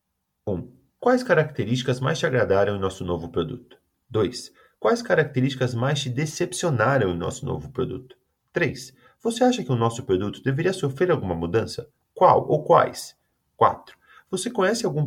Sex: male